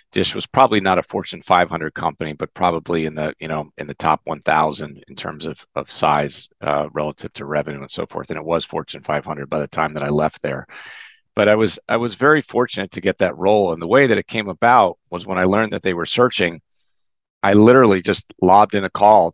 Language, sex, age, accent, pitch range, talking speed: English, male, 40-59, American, 80-100 Hz, 235 wpm